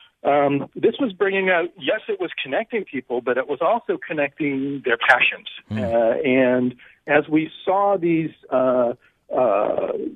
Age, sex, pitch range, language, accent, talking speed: 50-69, male, 130-180 Hz, English, American, 140 wpm